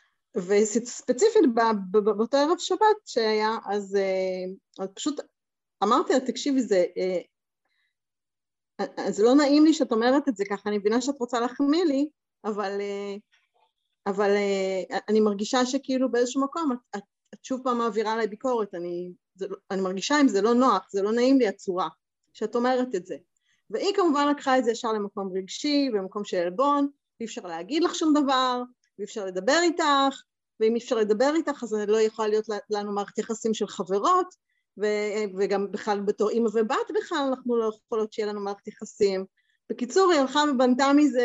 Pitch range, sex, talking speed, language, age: 210-275 Hz, female, 170 wpm, Hebrew, 30-49